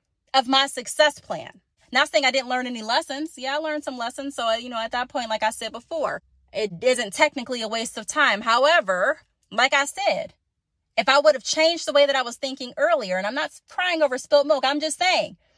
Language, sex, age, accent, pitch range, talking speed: English, female, 30-49, American, 205-295 Hz, 230 wpm